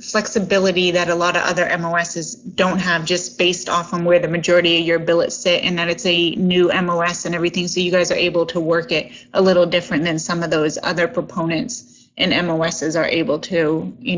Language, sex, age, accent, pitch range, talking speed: English, female, 20-39, American, 170-195 Hz, 215 wpm